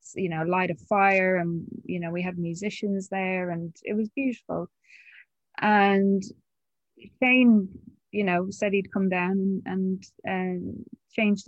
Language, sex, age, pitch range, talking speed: English, female, 10-29, 180-210 Hz, 145 wpm